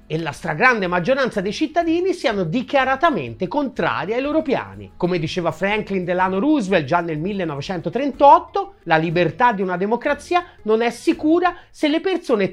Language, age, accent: Italian, 30-49, native